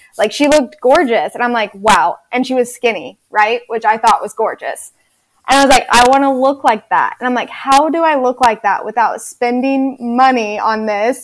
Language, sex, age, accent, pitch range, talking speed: English, female, 10-29, American, 220-260 Hz, 225 wpm